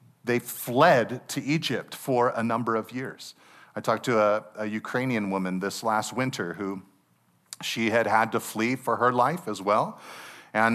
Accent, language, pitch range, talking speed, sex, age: American, English, 110-140 Hz, 175 wpm, male, 40-59